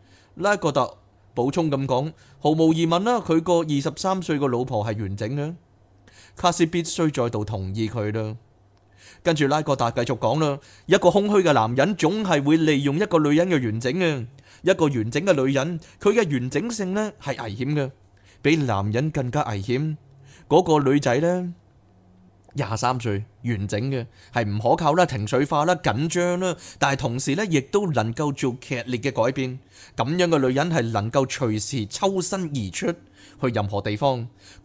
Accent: native